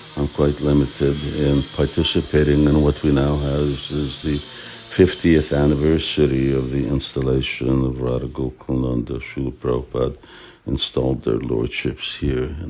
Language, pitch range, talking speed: English, 70-80 Hz, 130 wpm